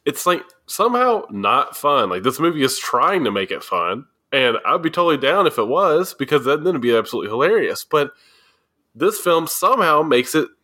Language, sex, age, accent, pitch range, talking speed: English, male, 20-39, American, 130-210 Hz, 190 wpm